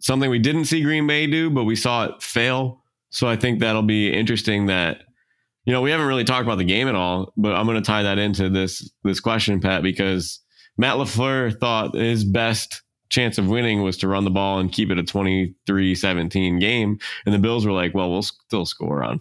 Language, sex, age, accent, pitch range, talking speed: English, male, 20-39, American, 95-115 Hz, 225 wpm